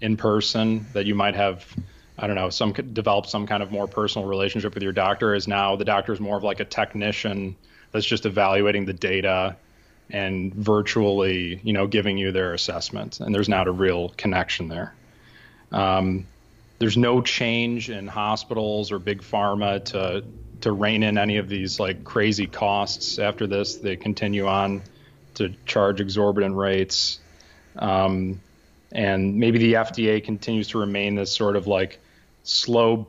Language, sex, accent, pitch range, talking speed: English, male, American, 95-110 Hz, 165 wpm